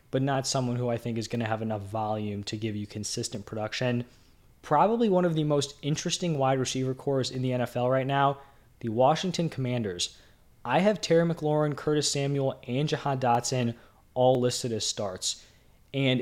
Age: 20-39